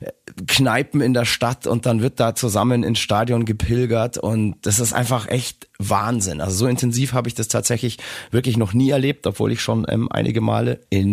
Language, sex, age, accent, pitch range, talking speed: German, male, 30-49, German, 95-120 Hz, 195 wpm